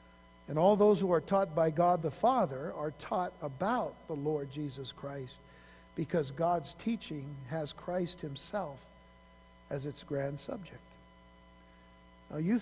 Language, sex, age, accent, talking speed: English, male, 60-79, American, 140 wpm